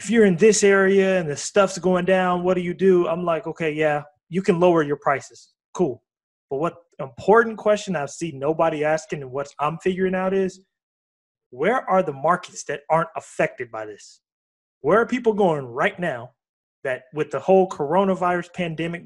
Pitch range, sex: 140-180 Hz, male